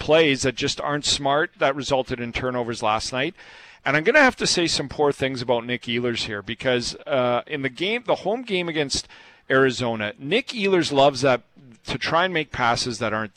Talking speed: 200 wpm